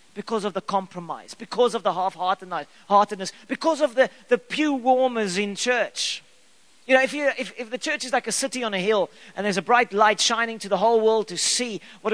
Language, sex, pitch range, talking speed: English, male, 200-255 Hz, 215 wpm